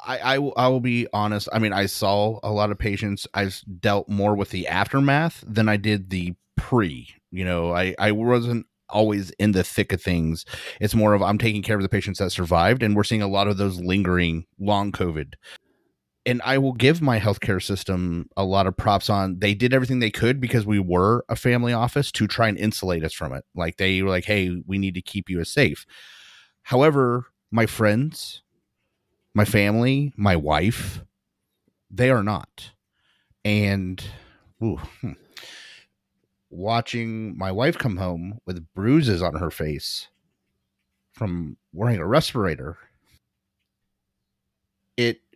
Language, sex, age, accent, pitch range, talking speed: English, male, 30-49, American, 95-115 Hz, 165 wpm